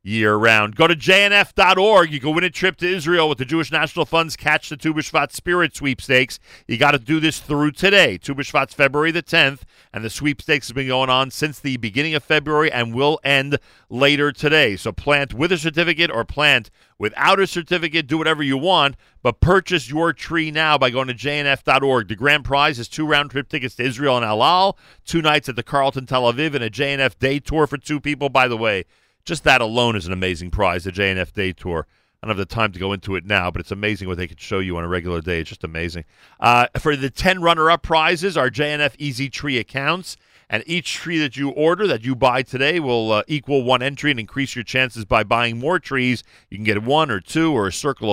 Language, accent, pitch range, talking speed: English, American, 115-155 Hz, 225 wpm